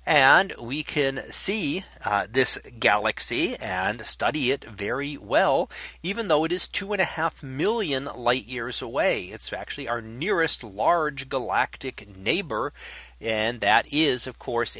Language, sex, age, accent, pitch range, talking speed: English, male, 40-59, American, 115-160 Hz, 145 wpm